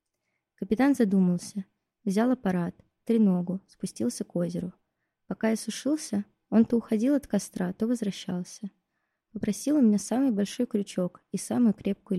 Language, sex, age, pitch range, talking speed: Russian, female, 20-39, 190-225 Hz, 135 wpm